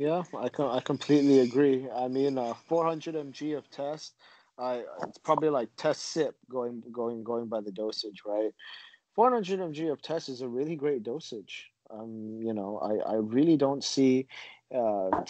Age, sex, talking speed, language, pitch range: 20-39, male, 175 wpm, English, 110-155 Hz